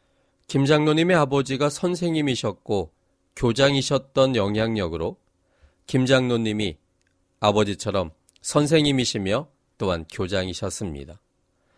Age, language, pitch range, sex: 40-59, Korean, 95-135 Hz, male